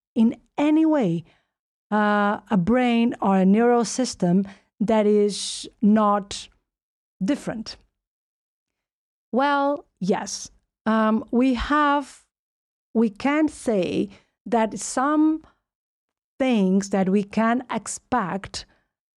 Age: 50-69